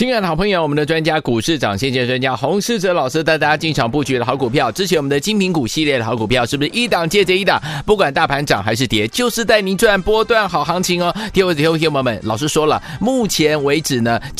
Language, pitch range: Chinese, 140-190 Hz